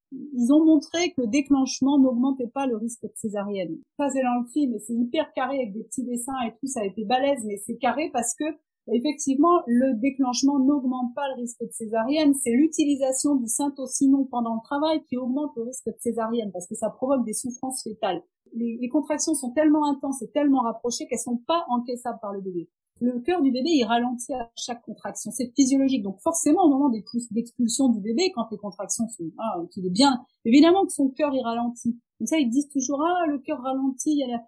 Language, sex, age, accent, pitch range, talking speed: French, female, 40-59, French, 230-295 Hz, 210 wpm